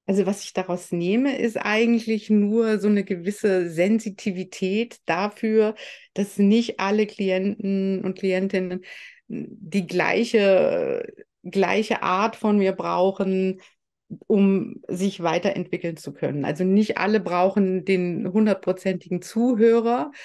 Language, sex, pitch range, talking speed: German, female, 185-210 Hz, 115 wpm